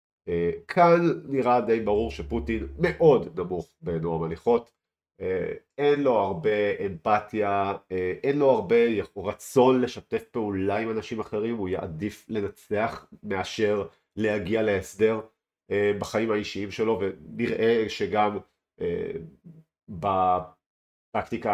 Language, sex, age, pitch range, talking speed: Hebrew, male, 40-59, 95-120 Hz, 110 wpm